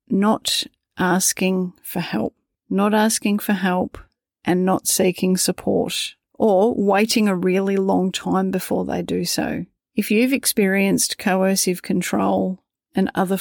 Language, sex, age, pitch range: English, female, 40-59, 185-205 Hz